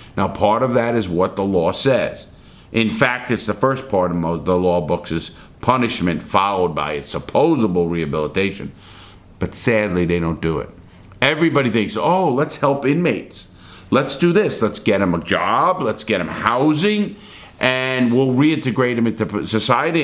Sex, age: male, 50-69